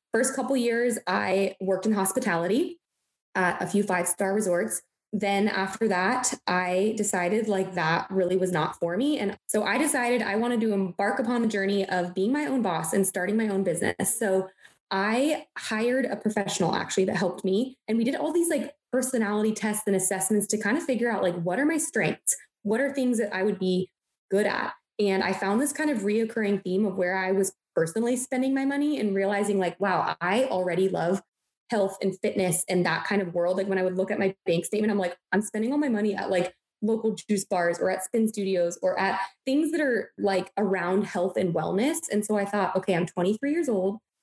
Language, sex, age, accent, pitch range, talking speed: English, female, 20-39, American, 185-230 Hz, 215 wpm